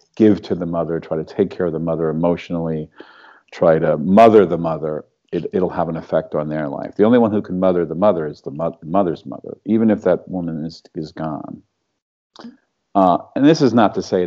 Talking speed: 210 wpm